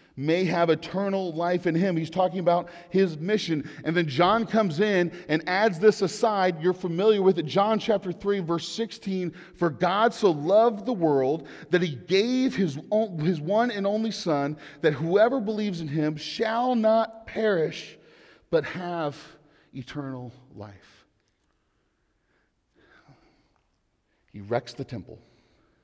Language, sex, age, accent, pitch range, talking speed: English, male, 40-59, American, 105-175 Hz, 140 wpm